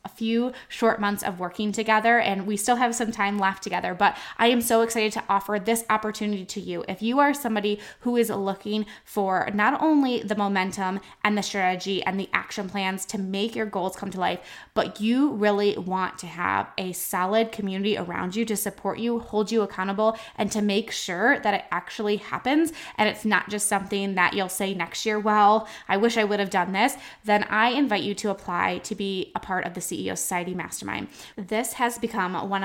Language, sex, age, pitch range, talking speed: English, female, 20-39, 195-225 Hz, 210 wpm